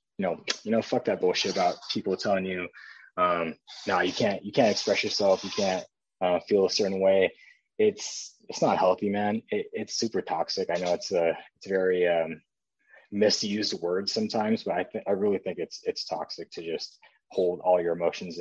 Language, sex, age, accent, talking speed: English, male, 20-39, American, 200 wpm